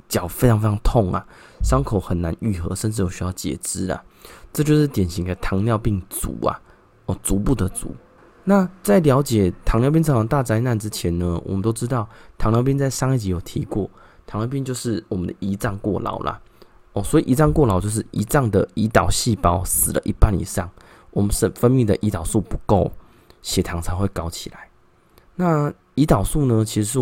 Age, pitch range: 20-39, 95-125 Hz